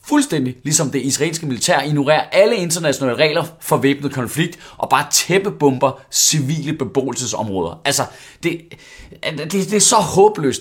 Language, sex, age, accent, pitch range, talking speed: Danish, male, 30-49, native, 130-165 Hz, 135 wpm